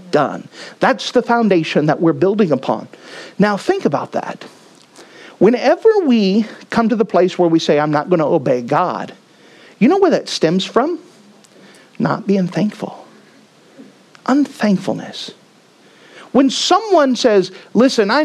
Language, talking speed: English, 140 wpm